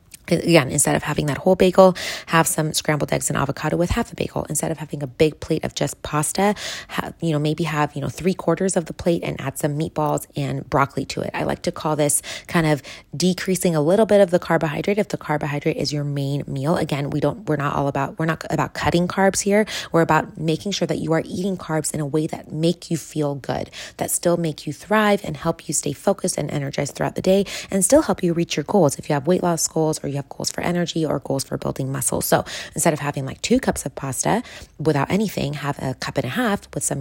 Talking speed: 250 wpm